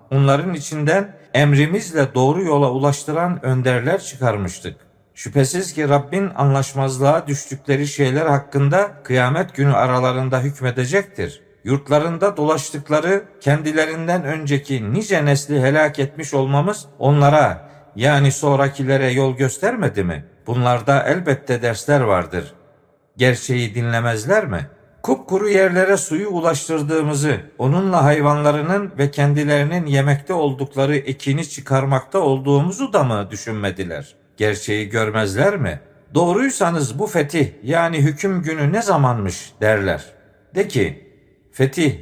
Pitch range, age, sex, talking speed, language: 130-155 Hz, 50-69, male, 105 wpm, Turkish